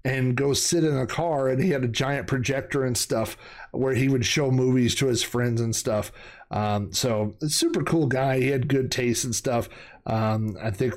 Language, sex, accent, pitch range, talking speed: English, male, American, 115-140 Hz, 210 wpm